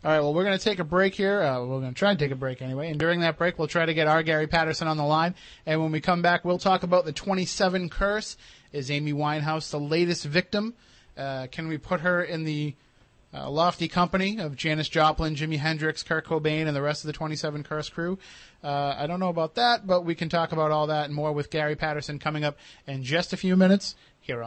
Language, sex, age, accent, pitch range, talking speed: English, male, 30-49, American, 145-175 Hz, 250 wpm